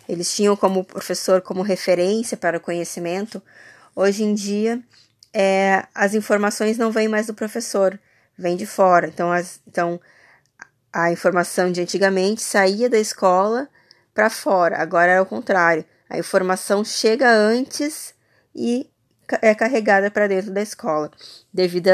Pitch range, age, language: 185-215 Hz, 20-39, Portuguese